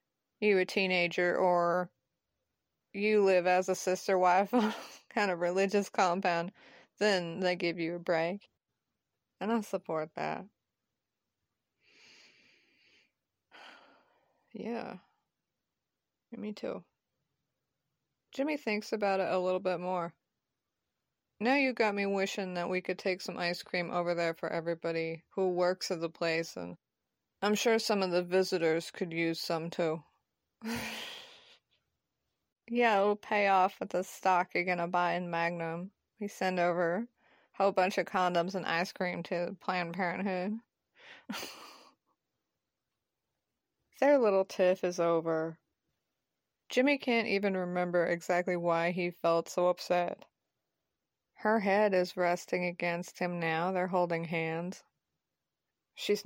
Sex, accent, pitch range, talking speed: female, American, 170-205 Hz, 130 wpm